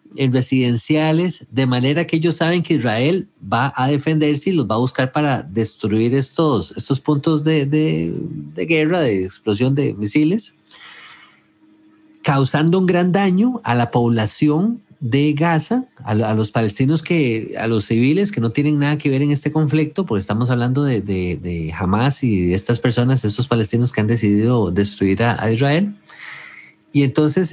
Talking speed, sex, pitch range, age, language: 170 wpm, male, 115-155 Hz, 40-59, English